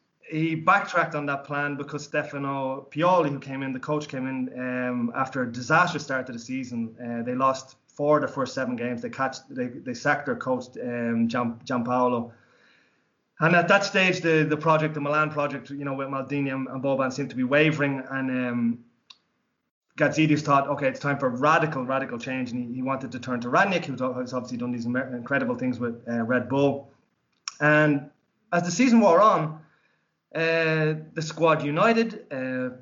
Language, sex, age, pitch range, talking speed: English, male, 20-39, 125-150 Hz, 190 wpm